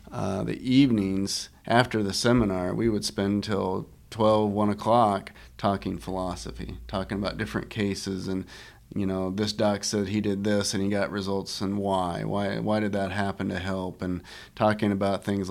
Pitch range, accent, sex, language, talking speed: 95-105 Hz, American, male, English, 175 wpm